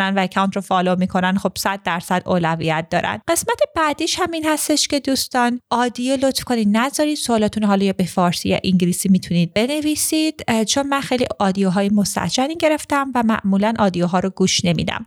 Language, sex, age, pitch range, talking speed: Persian, female, 30-49, 190-245 Hz, 155 wpm